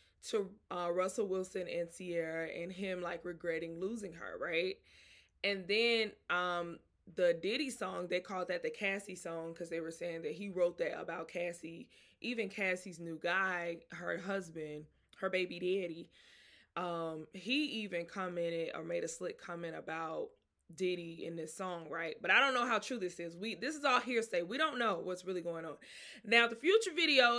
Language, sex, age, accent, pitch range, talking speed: English, female, 20-39, American, 170-210 Hz, 180 wpm